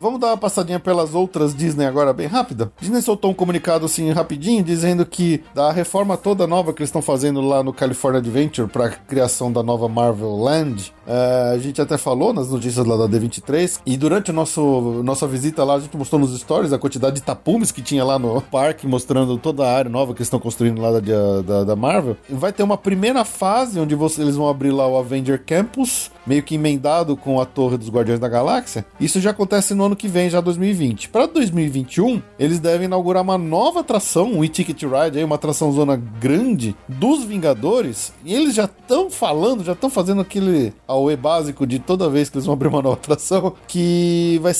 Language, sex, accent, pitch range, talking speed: Portuguese, male, Brazilian, 135-180 Hz, 205 wpm